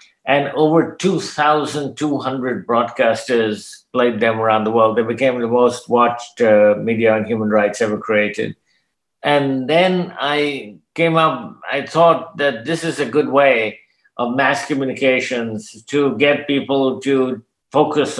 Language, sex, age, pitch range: English, male, 50-69, 115-140 Hz